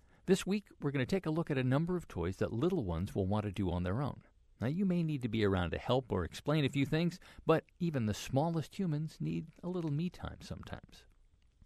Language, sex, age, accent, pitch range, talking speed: English, male, 50-69, American, 105-150 Hz, 245 wpm